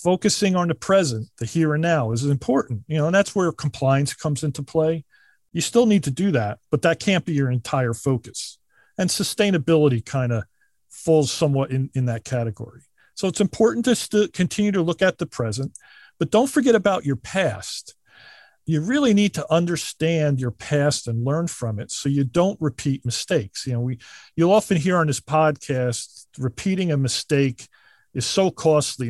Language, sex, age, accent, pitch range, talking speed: English, male, 40-59, American, 125-175 Hz, 185 wpm